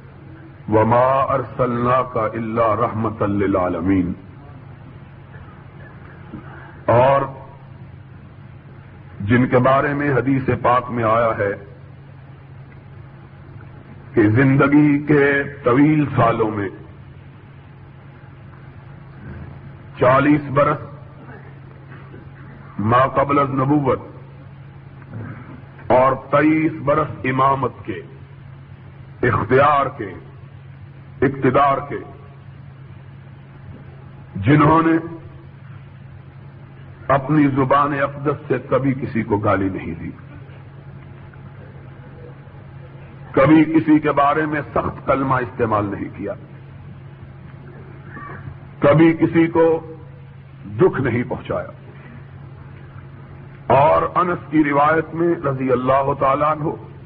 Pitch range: 125-140 Hz